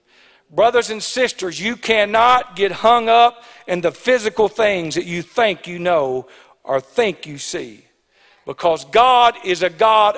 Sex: male